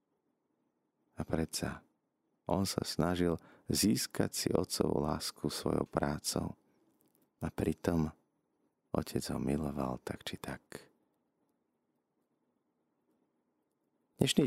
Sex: male